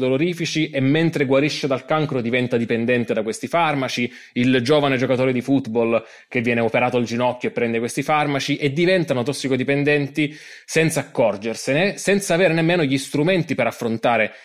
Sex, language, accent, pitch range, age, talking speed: male, Italian, native, 120-150 Hz, 20-39, 150 wpm